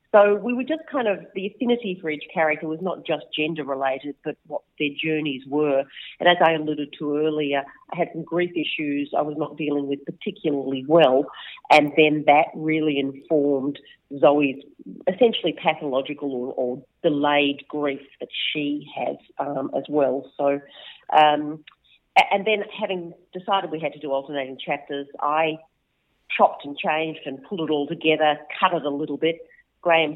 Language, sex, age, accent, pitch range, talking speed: English, female, 40-59, Australian, 150-180 Hz, 165 wpm